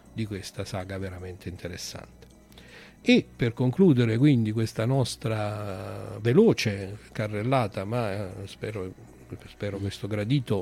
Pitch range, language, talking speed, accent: 105-135 Hz, Italian, 100 wpm, native